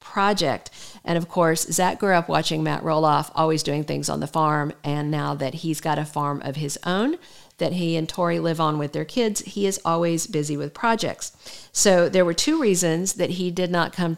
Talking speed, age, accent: 215 wpm, 50-69, American